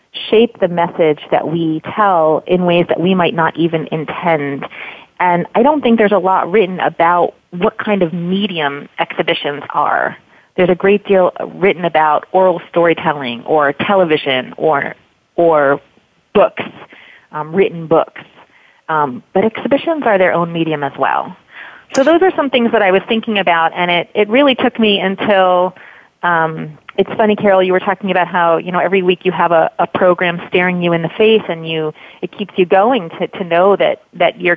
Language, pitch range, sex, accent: English, 165-190 Hz, female, American